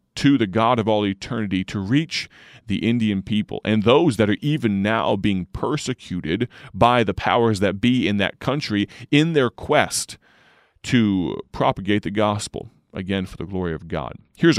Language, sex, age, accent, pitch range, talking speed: English, male, 30-49, American, 95-115 Hz, 170 wpm